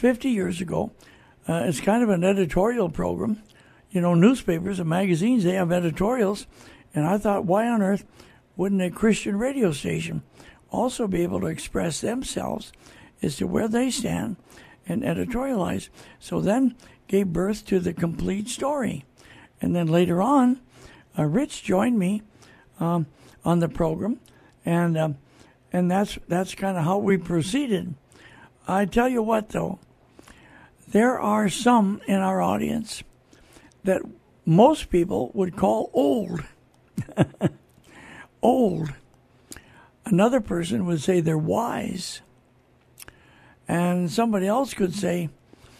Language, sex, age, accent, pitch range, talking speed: English, male, 60-79, American, 170-220 Hz, 130 wpm